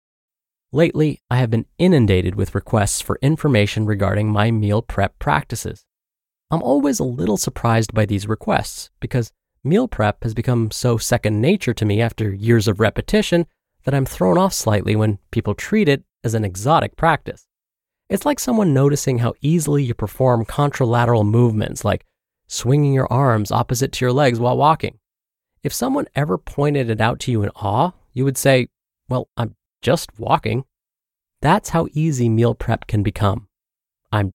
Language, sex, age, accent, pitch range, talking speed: English, male, 30-49, American, 105-145 Hz, 165 wpm